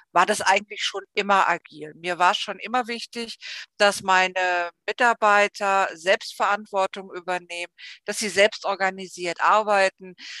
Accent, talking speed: German, 120 wpm